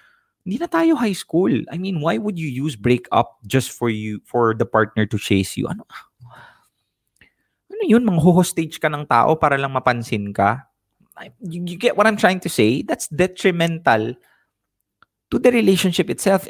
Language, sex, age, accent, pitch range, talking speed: English, male, 20-39, Filipino, 110-150 Hz, 160 wpm